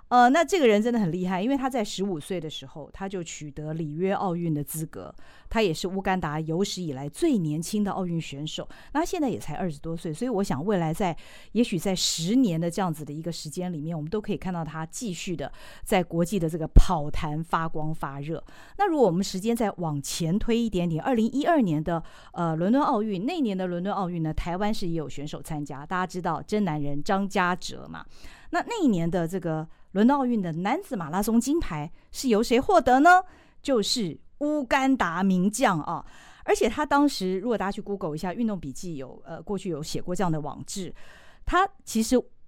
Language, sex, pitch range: Chinese, female, 165-230 Hz